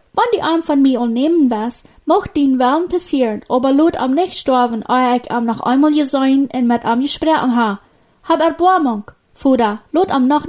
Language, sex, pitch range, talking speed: German, female, 230-295 Hz, 195 wpm